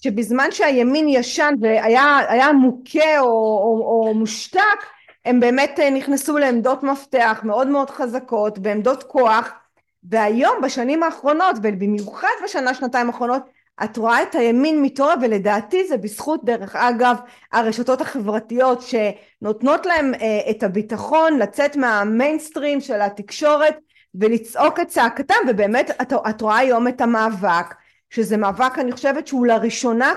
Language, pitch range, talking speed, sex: Hebrew, 225-280 Hz, 125 wpm, female